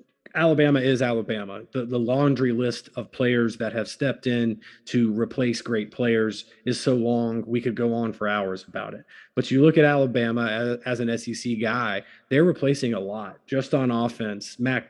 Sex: male